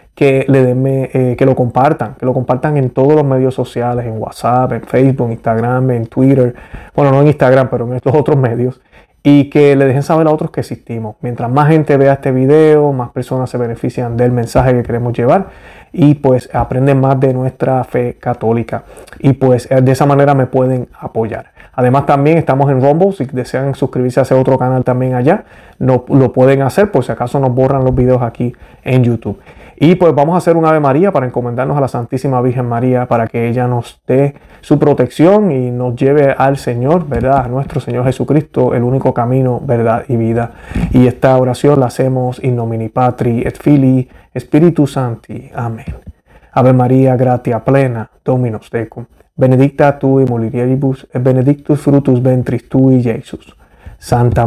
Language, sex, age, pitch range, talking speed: Spanish, male, 30-49, 120-140 Hz, 185 wpm